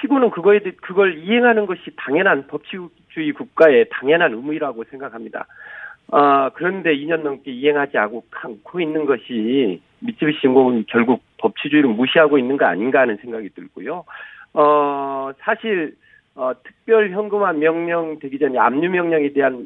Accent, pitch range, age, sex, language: native, 140-205 Hz, 40-59, male, Korean